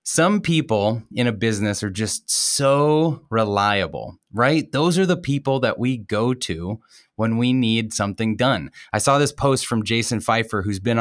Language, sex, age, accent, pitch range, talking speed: English, male, 20-39, American, 105-135 Hz, 175 wpm